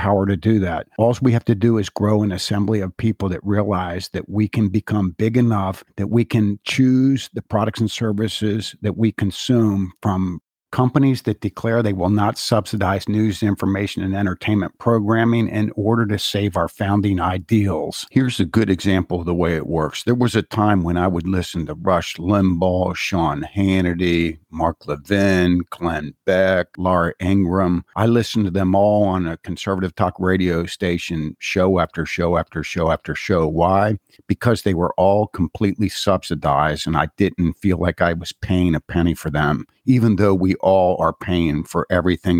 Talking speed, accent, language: 180 wpm, American, English